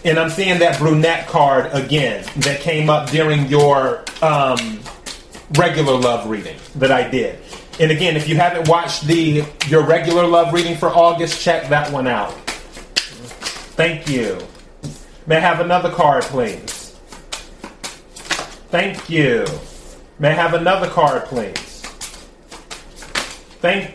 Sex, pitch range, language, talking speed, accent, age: male, 150-180 Hz, English, 135 wpm, American, 30-49